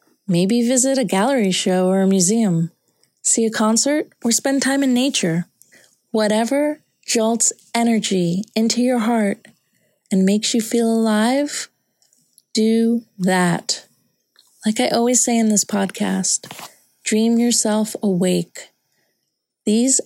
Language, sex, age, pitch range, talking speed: English, female, 30-49, 200-245 Hz, 120 wpm